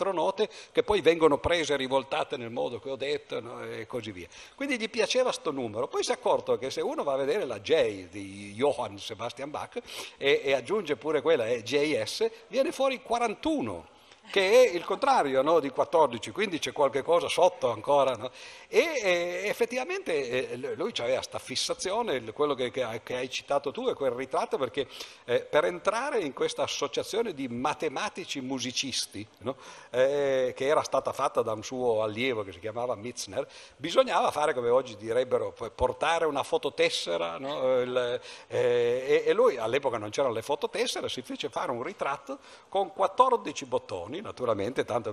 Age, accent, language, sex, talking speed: 50-69, native, Italian, male, 165 wpm